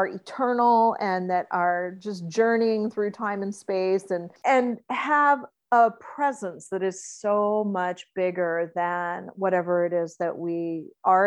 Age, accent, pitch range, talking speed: 40-59, American, 185-245 Hz, 145 wpm